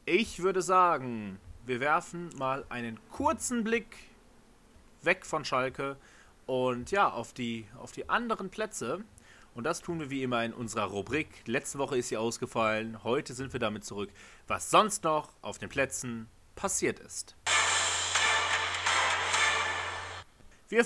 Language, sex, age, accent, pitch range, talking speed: German, male, 30-49, German, 125-185 Hz, 140 wpm